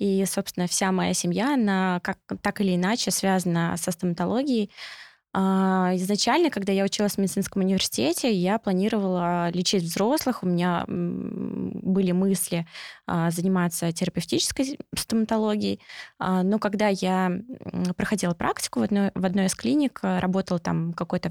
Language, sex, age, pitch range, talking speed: Russian, female, 20-39, 180-215 Hz, 120 wpm